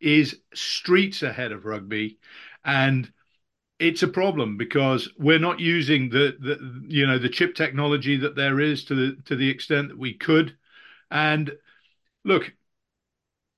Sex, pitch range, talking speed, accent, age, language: male, 125-155 Hz, 145 wpm, British, 50-69, English